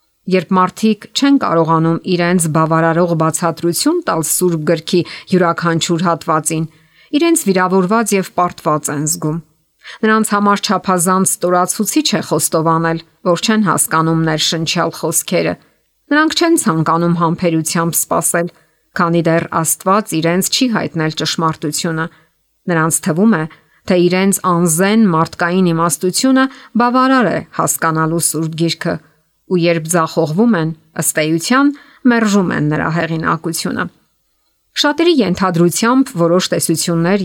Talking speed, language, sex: 75 wpm, English, female